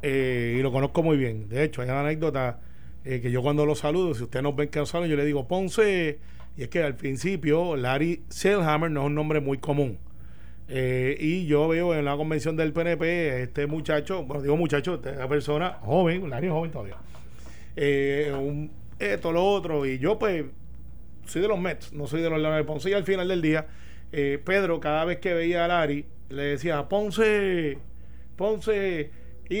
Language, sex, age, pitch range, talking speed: Spanish, male, 30-49, 135-170 Hz, 200 wpm